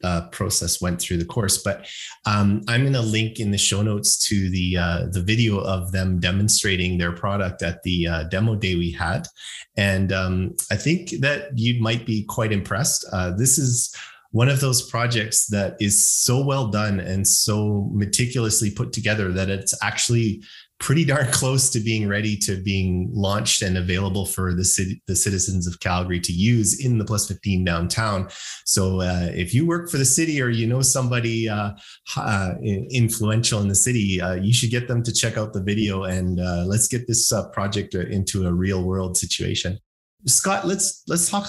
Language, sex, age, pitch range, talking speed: English, male, 30-49, 95-115 Hz, 190 wpm